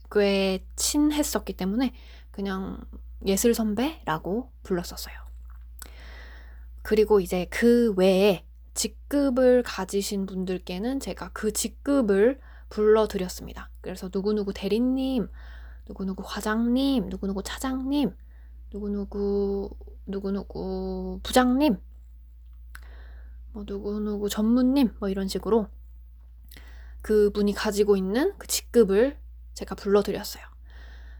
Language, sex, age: Korean, female, 20-39